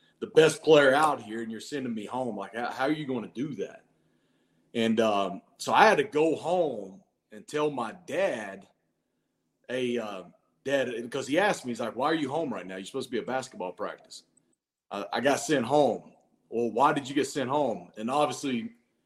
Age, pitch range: 30-49, 120-170 Hz